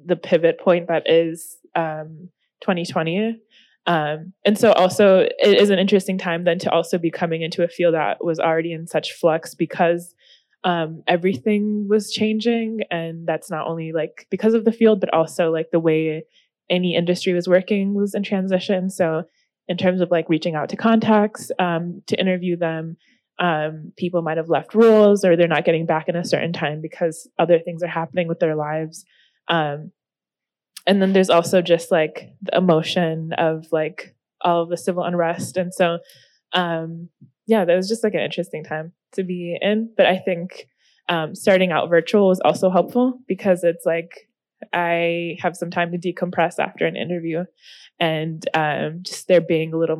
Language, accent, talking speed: English, American, 180 wpm